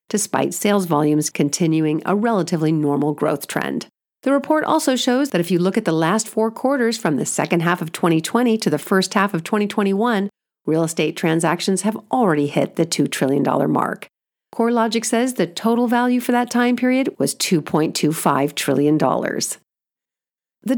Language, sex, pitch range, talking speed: English, female, 160-240 Hz, 165 wpm